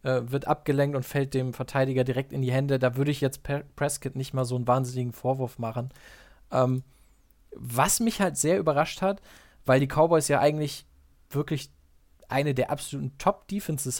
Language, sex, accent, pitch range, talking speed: German, male, German, 130-160 Hz, 170 wpm